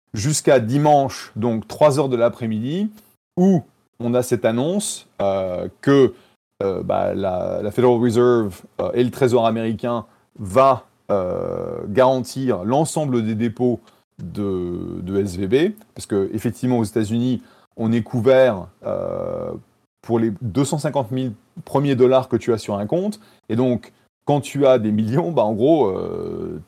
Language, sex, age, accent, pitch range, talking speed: French, male, 30-49, French, 110-130 Hz, 140 wpm